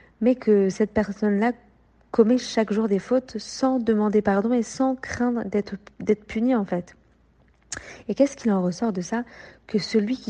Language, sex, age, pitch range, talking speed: French, female, 40-59, 195-235 Hz, 175 wpm